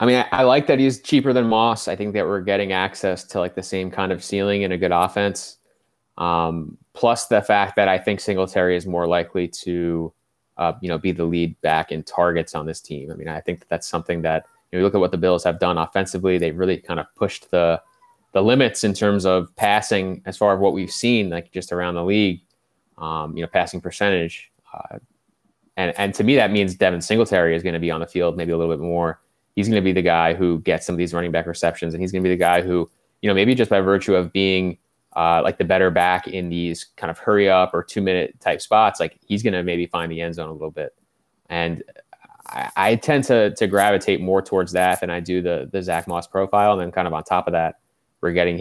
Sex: male